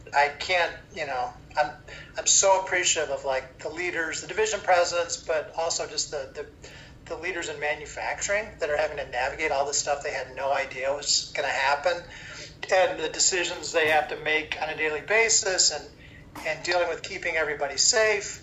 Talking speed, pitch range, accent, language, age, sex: 190 wpm, 145-180 Hz, American, English, 40-59, male